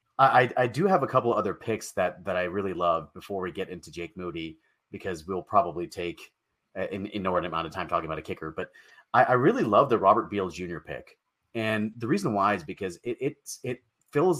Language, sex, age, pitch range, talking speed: English, male, 30-49, 100-125 Hz, 225 wpm